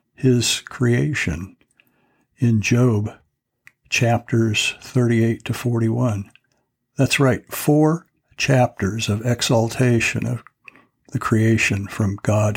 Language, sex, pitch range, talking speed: English, male, 110-135 Hz, 90 wpm